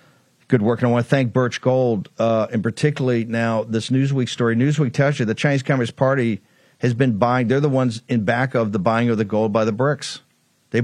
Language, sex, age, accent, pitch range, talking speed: English, male, 50-69, American, 115-135 Hz, 225 wpm